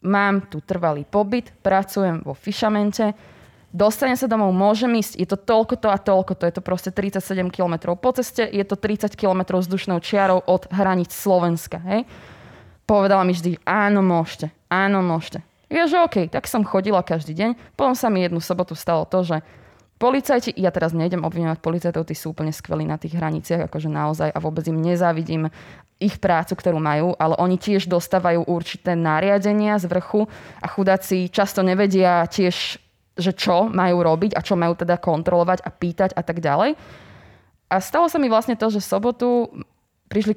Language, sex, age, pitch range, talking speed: Slovak, female, 20-39, 175-215 Hz, 180 wpm